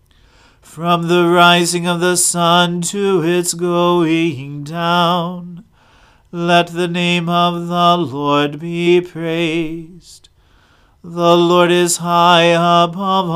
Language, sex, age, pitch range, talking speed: English, male, 40-59, 165-175 Hz, 105 wpm